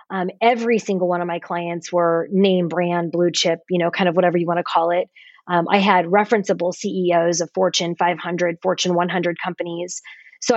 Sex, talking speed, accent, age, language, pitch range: female, 185 wpm, American, 20-39, English, 180-210 Hz